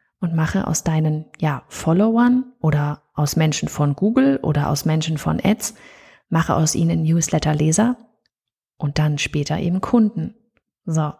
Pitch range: 165-210 Hz